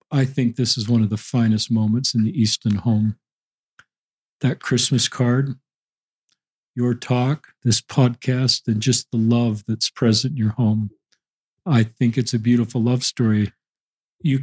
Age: 50-69